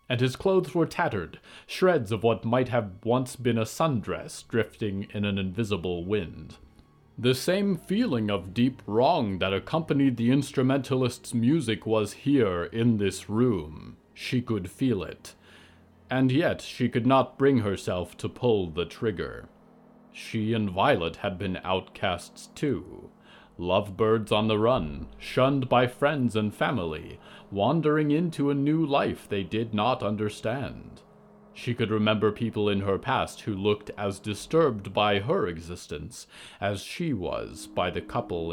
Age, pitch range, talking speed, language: 40-59, 105-130 Hz, 150 wpm, English